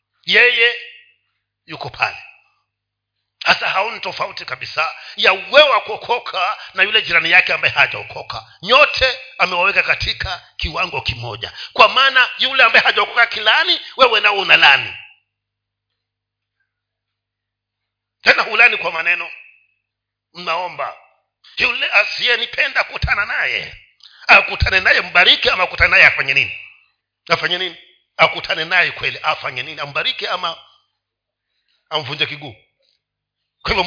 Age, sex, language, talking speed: 50-69, male, Swahili, 105 wpm